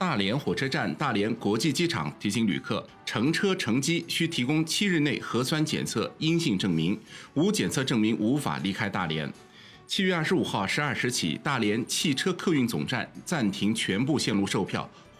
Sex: male